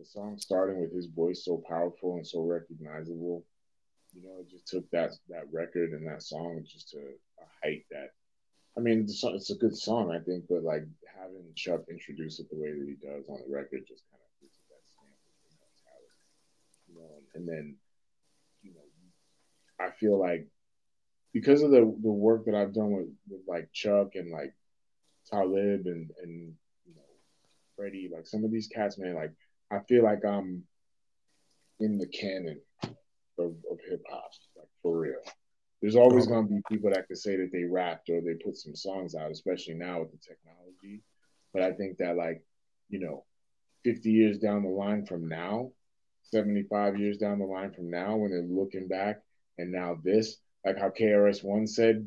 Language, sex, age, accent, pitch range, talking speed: English, male, 20-39, American, 85-105 Hz, 190 wpm